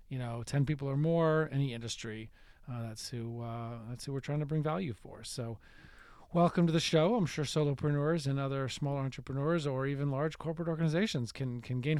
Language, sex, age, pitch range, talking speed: English, male, 40-59, 125-160 Hz, 200 wpm